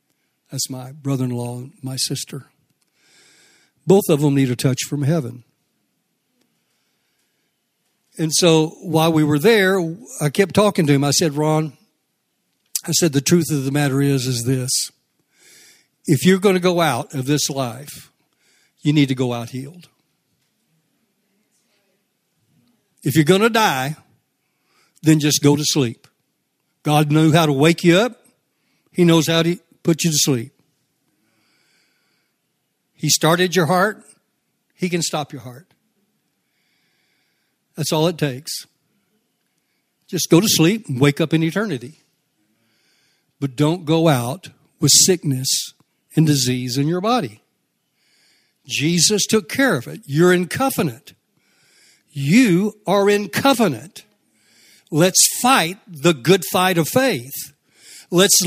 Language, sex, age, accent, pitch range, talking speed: English, male, 60-79, American, 140-185 Hz, 135 wpm